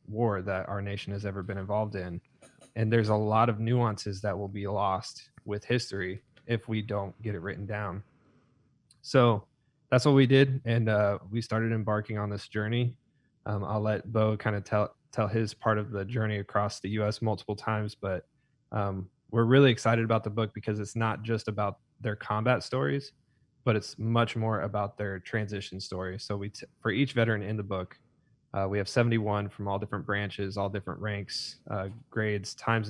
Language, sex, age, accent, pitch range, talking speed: English, male, 20-39, American, 100-115 Hz, 190 wpm